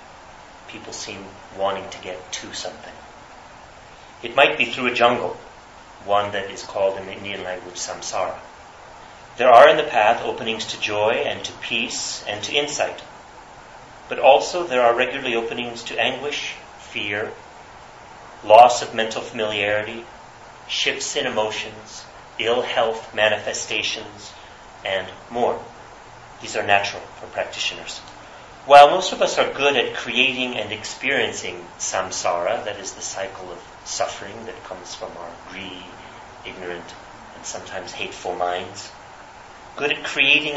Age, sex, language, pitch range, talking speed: 30-49, male, English, 95-120 Hz, 135 wpm